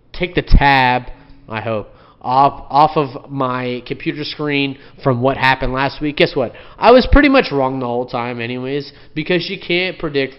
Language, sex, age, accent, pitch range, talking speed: English, male, 30-49, American, 125-145 Hz, 180 wpm